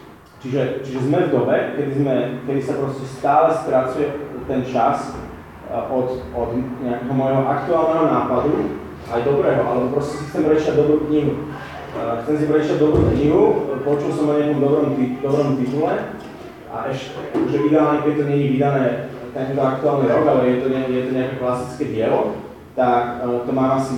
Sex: male